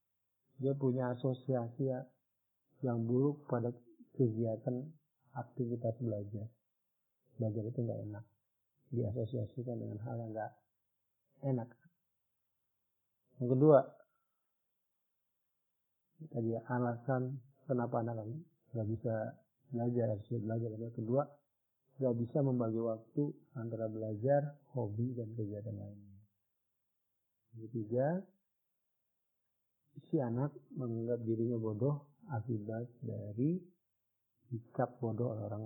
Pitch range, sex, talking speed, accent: 110-135 Hz, male, 90 wpm, native